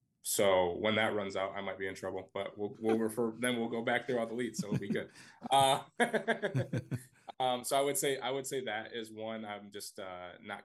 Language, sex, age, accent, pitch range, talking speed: English, male, 20-39, American, 95-120 Hz, 235 wpm